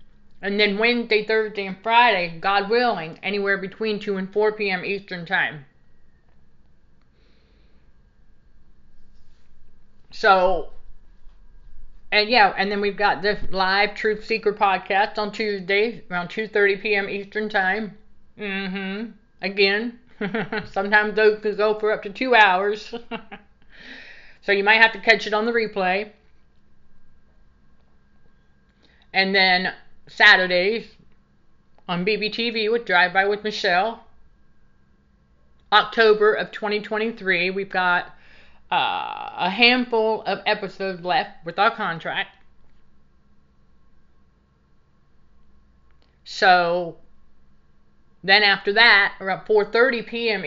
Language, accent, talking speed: English, American, 100 wpm